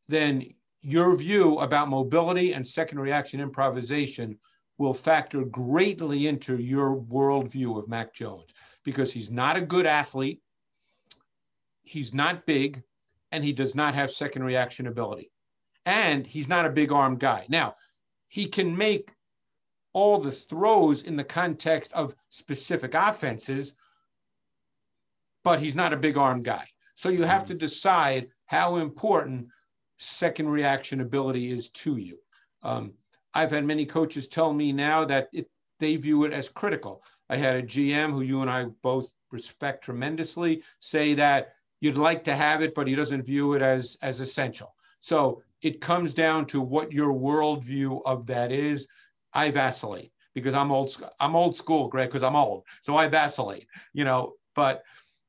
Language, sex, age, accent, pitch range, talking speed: English, male, 50-69, American, 135-165 Hz, 160 wpm